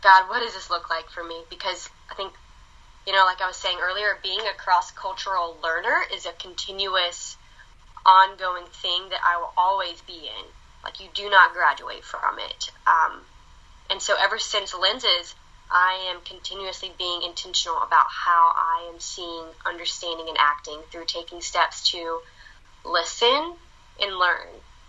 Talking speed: 160 wpm